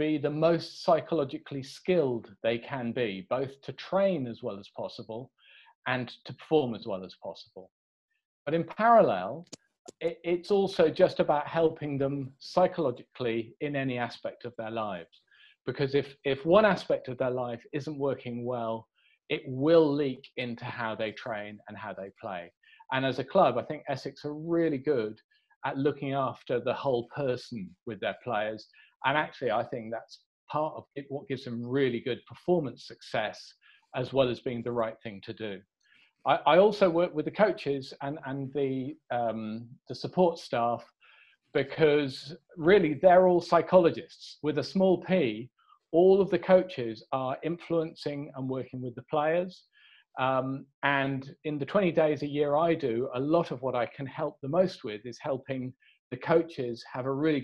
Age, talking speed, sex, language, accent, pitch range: 40-59, 170 wpm, male, English, British, 125-165 Hz